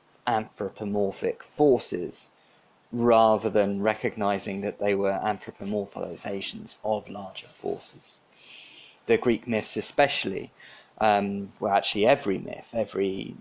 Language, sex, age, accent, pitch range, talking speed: English, male, 20-39, British, 100-115 Hz, 100 wpm